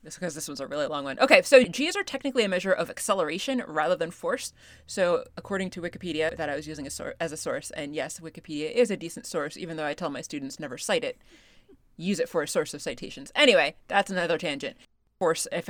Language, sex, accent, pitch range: English, female, American, 165-240 Hz